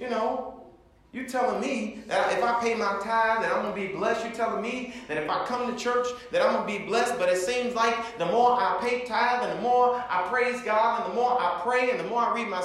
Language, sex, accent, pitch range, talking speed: English, male, American, 180-250 Hz, 275 wpm